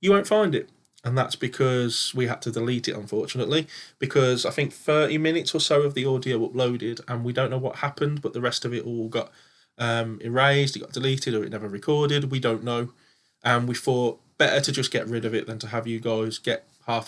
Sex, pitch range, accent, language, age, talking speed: male, 115-140 Hz, British, English, 20-39, 230 wpm